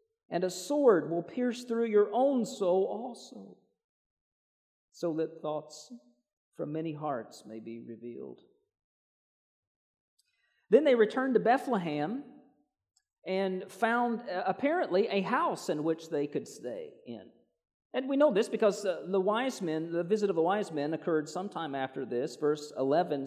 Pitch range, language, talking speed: 140-205 Hz, English, 140 wpm